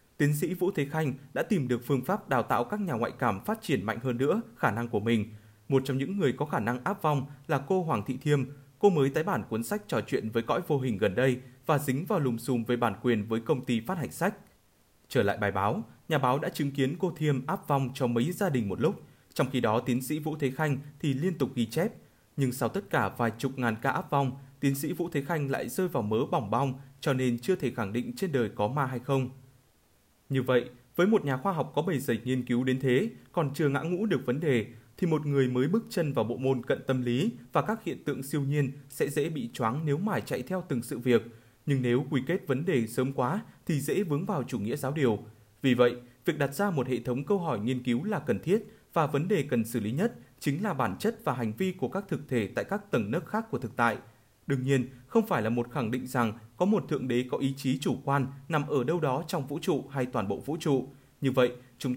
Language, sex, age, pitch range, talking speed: Vietnamese, male, 20-39, 125-155 Hz, 265 wpm